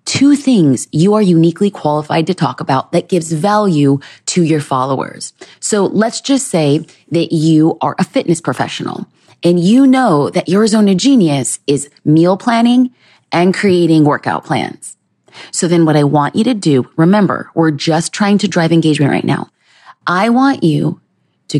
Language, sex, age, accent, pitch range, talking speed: English, female, 30-49, American, 145-210 Hz, 170 wpm